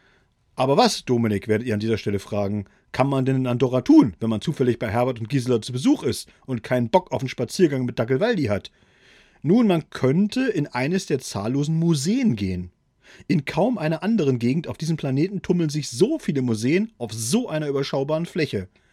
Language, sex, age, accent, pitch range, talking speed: German, male, 40-59, German, 130-190 Hz, 195 wpm